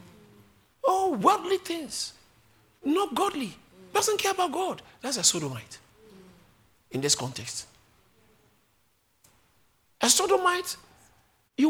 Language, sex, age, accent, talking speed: English, male, 50-69, Nigerian, 90 wpm